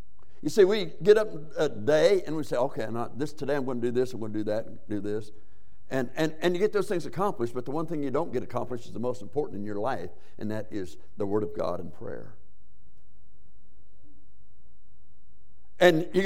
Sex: male